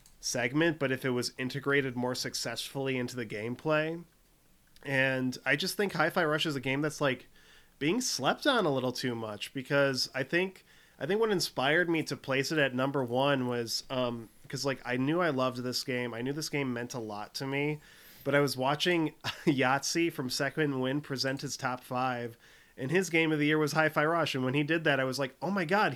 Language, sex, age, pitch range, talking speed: English, male, 20-39, 125-150 Hz, 215 wpm